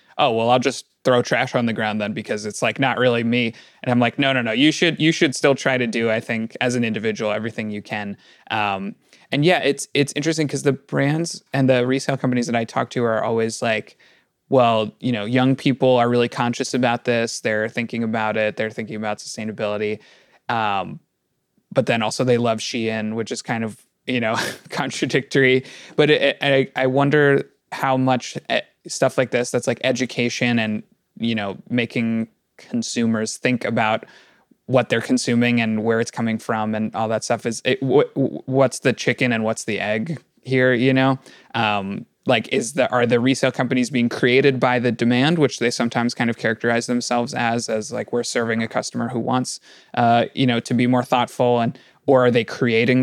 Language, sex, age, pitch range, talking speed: English, male, 20-39, 115-130 Hz, 200 wpm